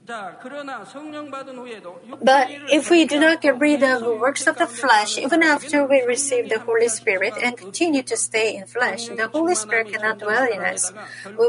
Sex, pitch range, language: female, 235-300 Hz, Korean